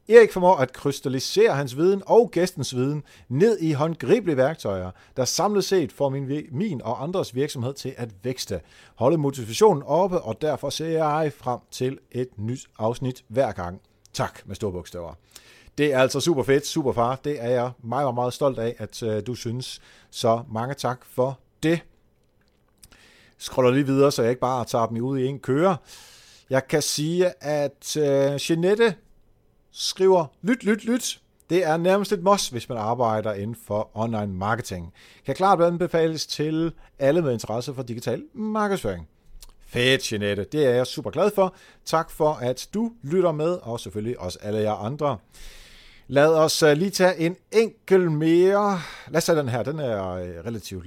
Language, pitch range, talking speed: Danish, 115-165 Hz, 170 wpm